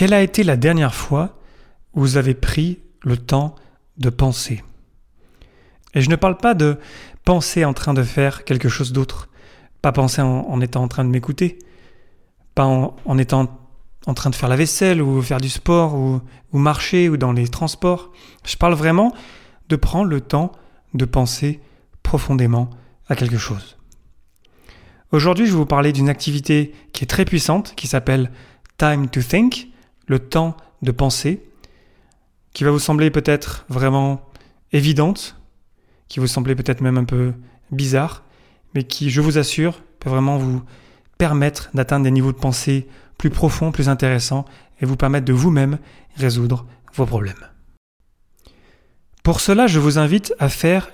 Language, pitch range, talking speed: French, 130-160 Hz, 165 wpm